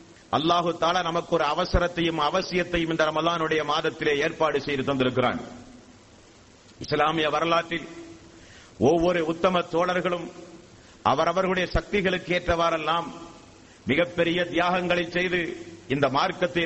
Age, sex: 50-69, male